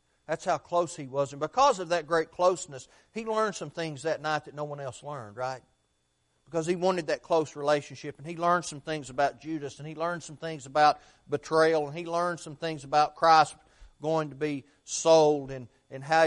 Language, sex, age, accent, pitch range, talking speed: English, male, 40-59, American, 135-170 Hz, 210 wpm